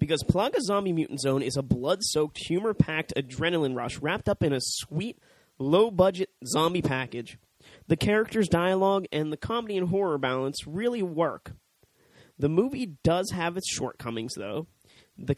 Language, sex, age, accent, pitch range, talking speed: English, male, 20-39, American, 135-170 Hz, 150 wpm